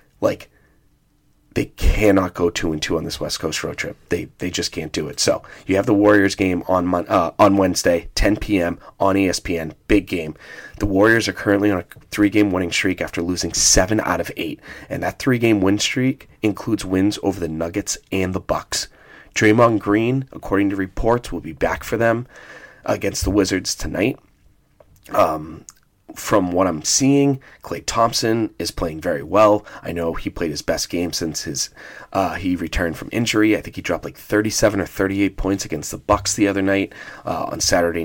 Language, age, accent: English, 30-49, American